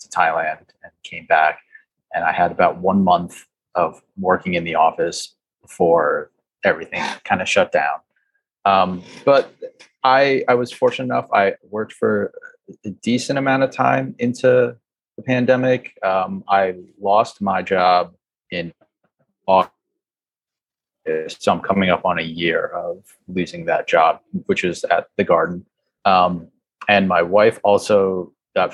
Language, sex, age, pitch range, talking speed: English, male, 30-49, 90-135 Hz, 140 wpm